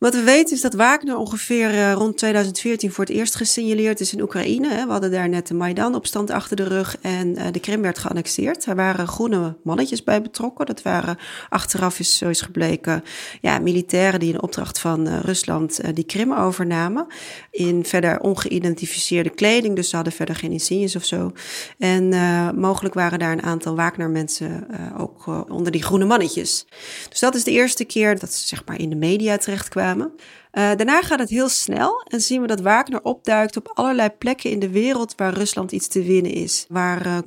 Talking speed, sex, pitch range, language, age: 195 wpm, female, 175-220 Hz, Dutch, 30-49